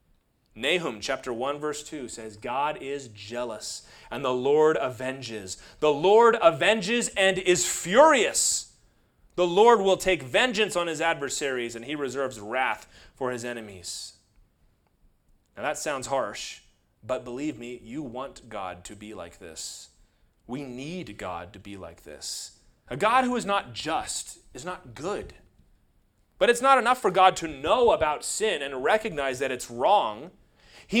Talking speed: 155 wpm